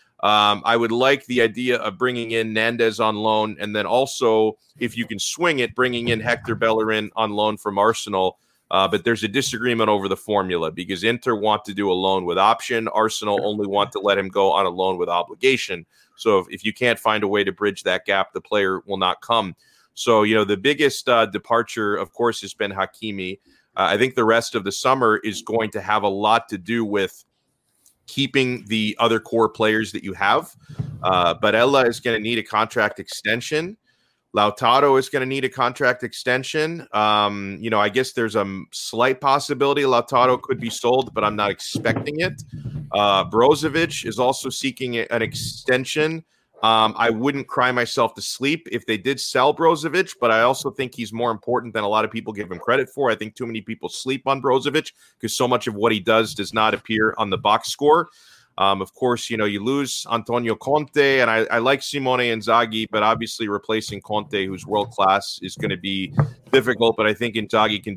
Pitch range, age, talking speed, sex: 105-125 Hz, 30-49, 205 wpm, male